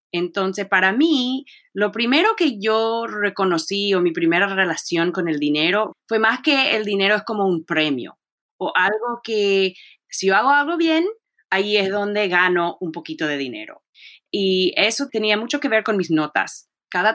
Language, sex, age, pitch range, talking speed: English, female, 30-49, 170-260 Hz, 175 wpm